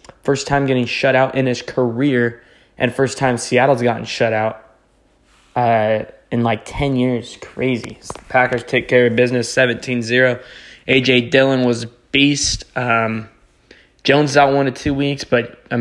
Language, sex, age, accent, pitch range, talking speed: English, male, 20-39, American, 120-130 Hz, 165 wpm